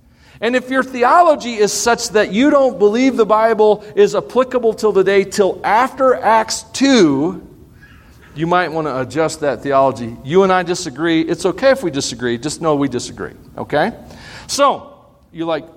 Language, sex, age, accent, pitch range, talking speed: English, male, 40-59, American, 130-205 Hz, 170 wpm